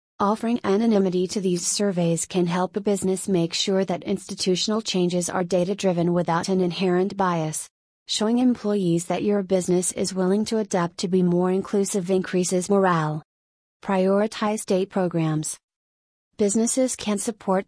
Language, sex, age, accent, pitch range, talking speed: English, female, 30-49, American, 180-205 Hz, 140 wpm